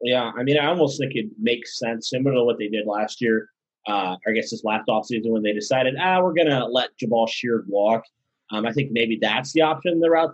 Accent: American